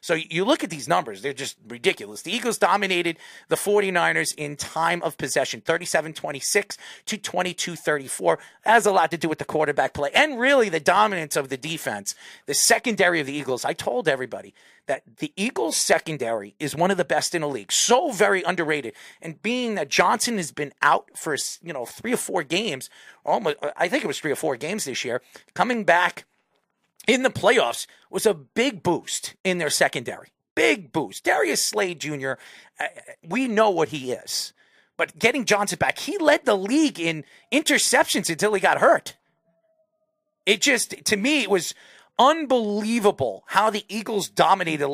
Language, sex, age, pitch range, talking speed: English, male, 40-59, 160-235 Hz, 180 wpm